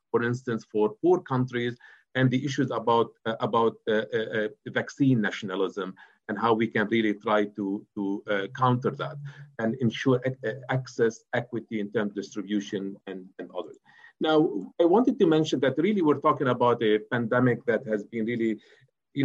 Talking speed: 170 wpm